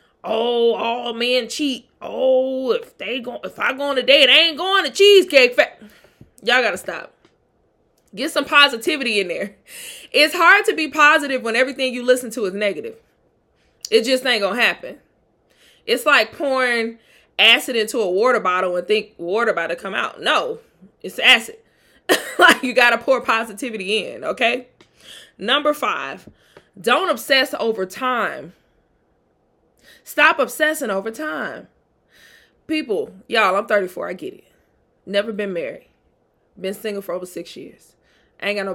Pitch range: 215-310 Hz